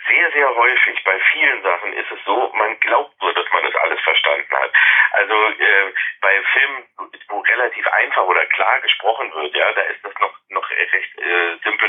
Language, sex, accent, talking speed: German, male, German, 195 wpm